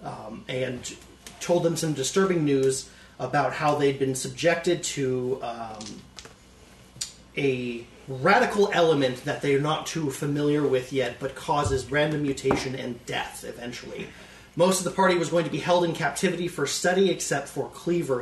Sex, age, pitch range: male, 30-49, 130-175 Hz